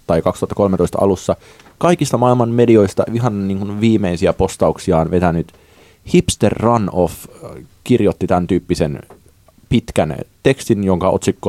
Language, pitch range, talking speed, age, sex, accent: Finnish, 85-100 Hz, 105 wpm, 30-49, male, native